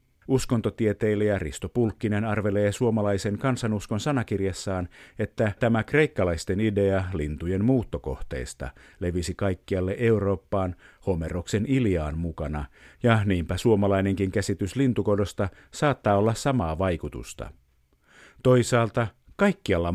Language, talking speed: Finnish, 90 wpm